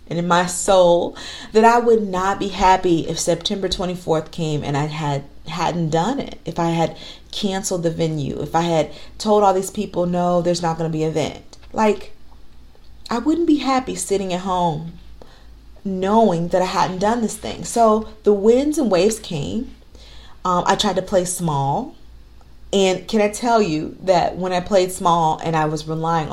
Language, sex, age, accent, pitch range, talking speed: English, female, 40-59, American, 160-200 Hz, 185 wpm